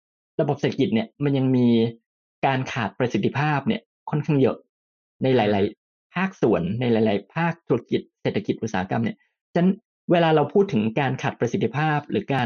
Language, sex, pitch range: Thai, male, 115-155 Hz